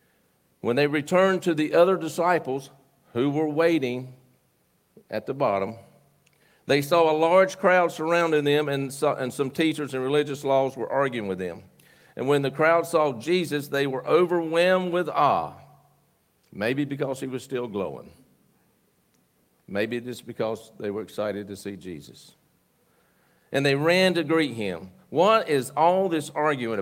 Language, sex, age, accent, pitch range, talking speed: English, male, 50-69, American, 120-155 Hz, 150 wpm